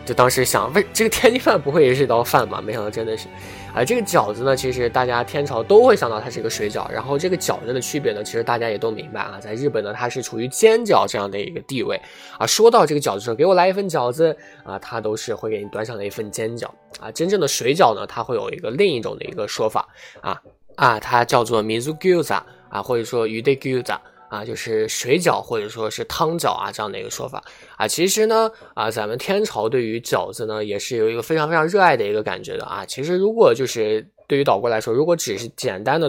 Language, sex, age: Chinese, male, 20-39